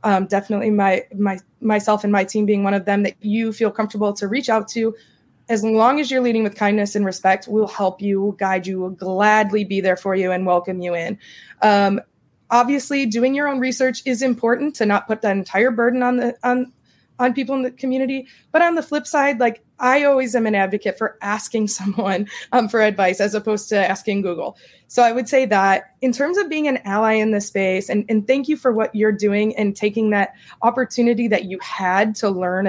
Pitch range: 200-260 Hz